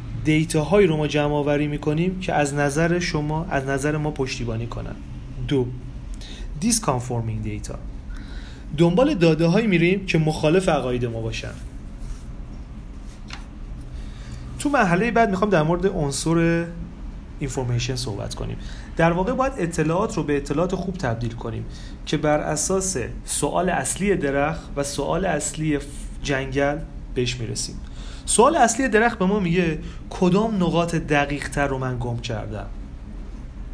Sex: male